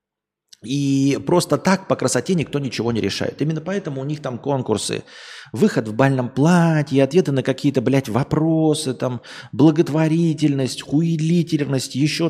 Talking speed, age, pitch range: 135 wpm, 30-49, 115-155 Hz